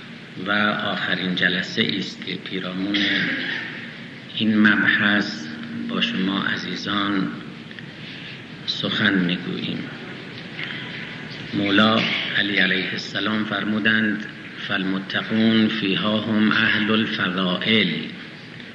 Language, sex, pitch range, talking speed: Persian, male, 95-115 Hz, 75 wpm